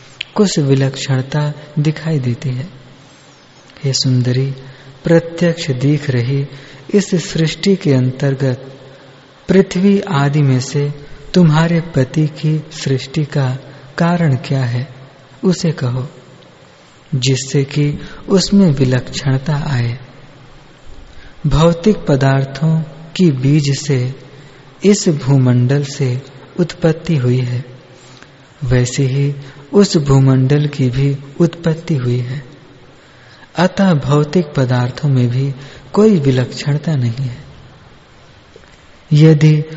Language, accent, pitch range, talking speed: Hindi, native, 130-160 Hz, 95 wpm